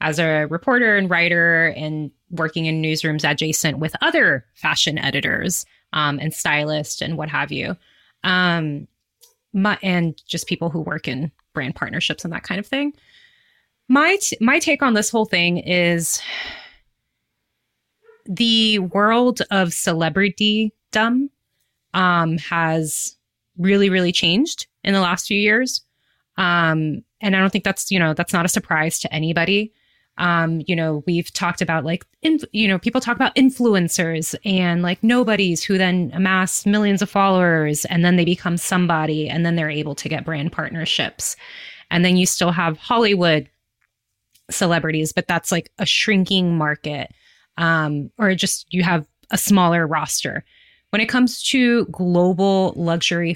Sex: female